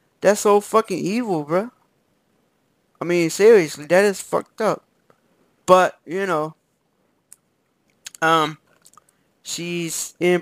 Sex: male